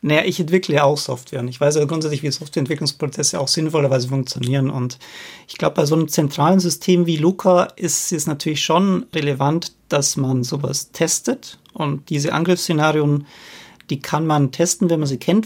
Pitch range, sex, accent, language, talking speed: 145-170 Hz, male, German, German, 175 wpm